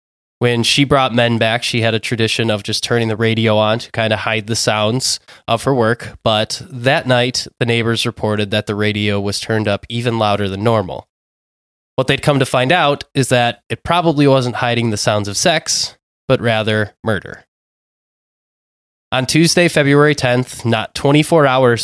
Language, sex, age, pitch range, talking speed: English, male, 20-39, 105-125 Hz, 180 wpm